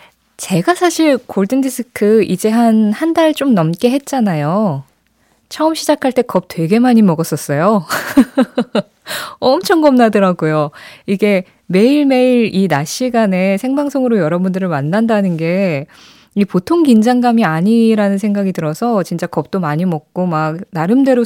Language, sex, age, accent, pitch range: Korean, female, 20-39, native, 180-250 Hz